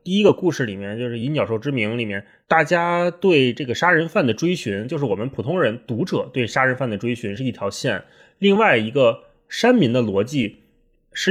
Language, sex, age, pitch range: Chinese, male, 20-39, 125-195 Hz